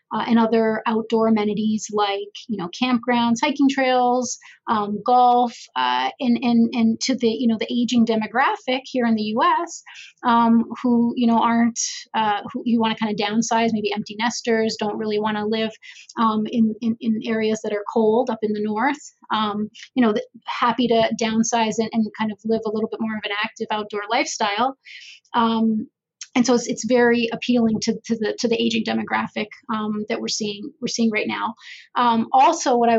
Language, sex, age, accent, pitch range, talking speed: English, female, 30-49, American, 220-240 Hz, 195 wpm